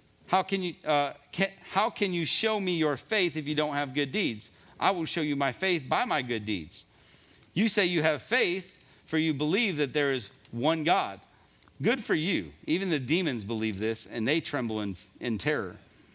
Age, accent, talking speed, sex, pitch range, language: 40-59, American, 205 wpm, male, 135-185 Hz, English